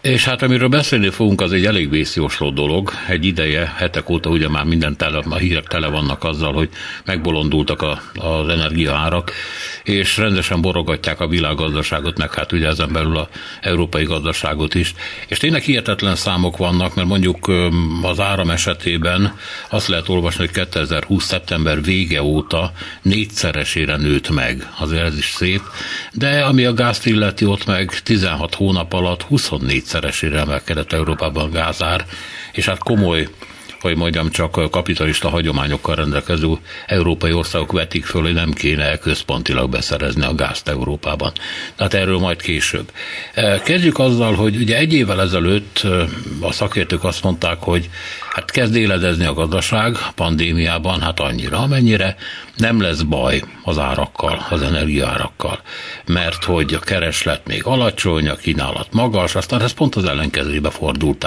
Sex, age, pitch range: male, 60-79, 80-95 Hz